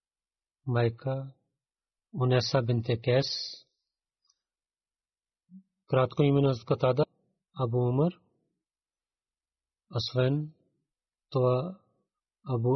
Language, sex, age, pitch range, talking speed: Bulgarian, male, 40-59, 120-140 Hz, 55 wpm